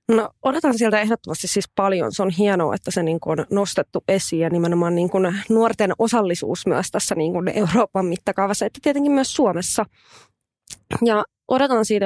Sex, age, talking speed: female, 20-39, 160 wpm